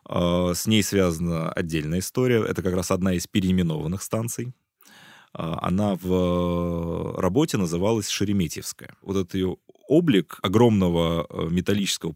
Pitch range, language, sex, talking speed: 90-105 Hz, Russian, male, 115 wpm